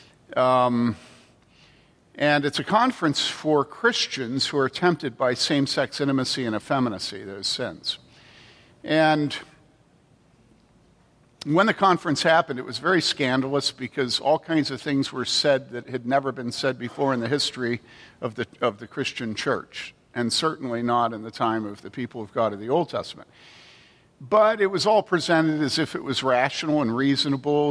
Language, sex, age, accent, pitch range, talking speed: English, male, 50-69, American, 130-155 Hz, 160 wpm